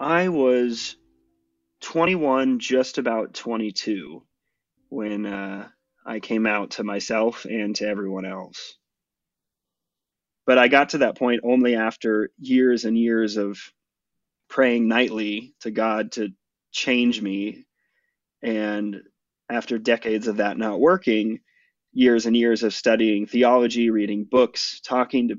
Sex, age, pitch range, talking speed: male, 30-49, 110-125 Hz, 125 wpm